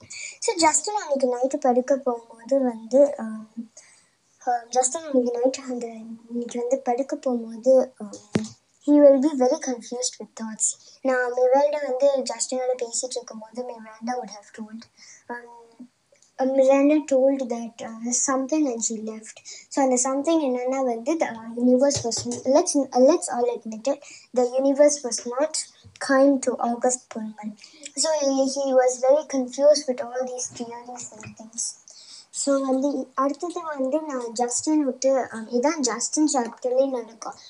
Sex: male